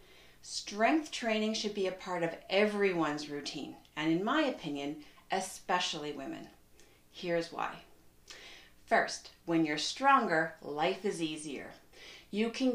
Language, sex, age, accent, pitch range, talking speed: English, female, 40-59, American, 160-215 Hz, 120 wpm